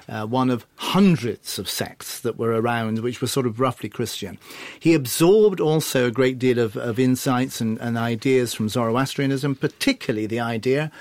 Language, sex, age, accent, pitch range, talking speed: English, male, 40-59, British, 120-155 Hz, 175 wpm